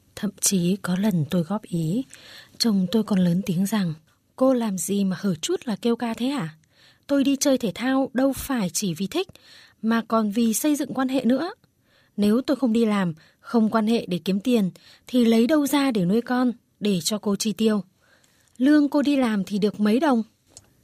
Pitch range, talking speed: 175-220 Hz, 210 wpm